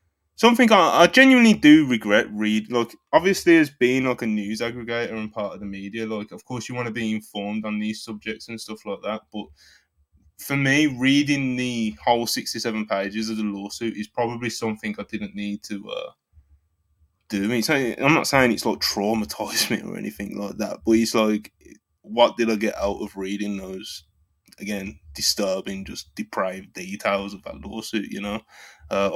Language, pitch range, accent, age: English, 100-115 Hz, British, 20-39